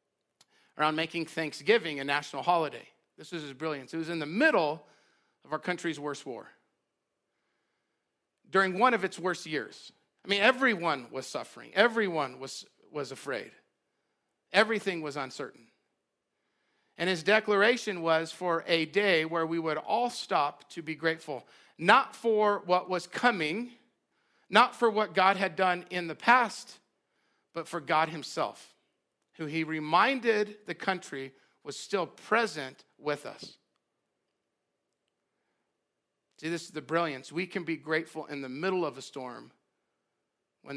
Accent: American